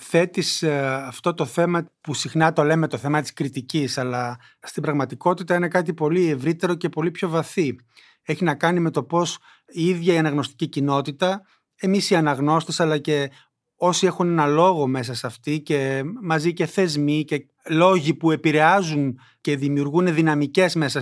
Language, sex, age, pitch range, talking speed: Greek, male, 30-49, 140-180 Hz, 165 wpm